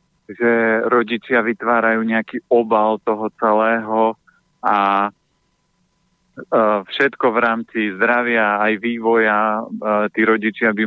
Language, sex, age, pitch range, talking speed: Slovak, male, 40-59, 110-125 Hz, 95 wpm